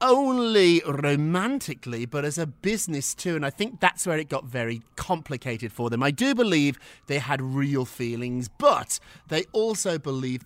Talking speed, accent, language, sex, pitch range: 165 wpm, British, English, male, 135-210 Hz